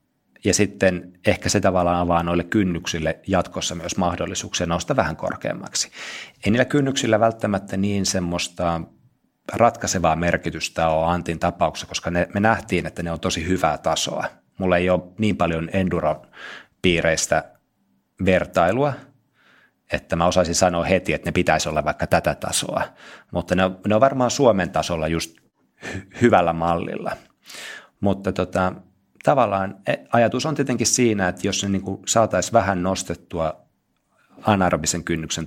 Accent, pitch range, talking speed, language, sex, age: native, 85-100 Hz, 135 wpm, Finnish, male, 30-49